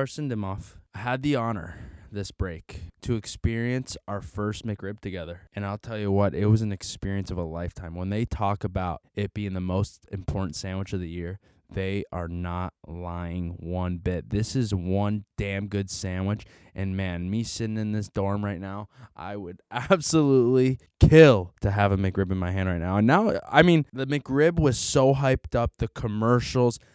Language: English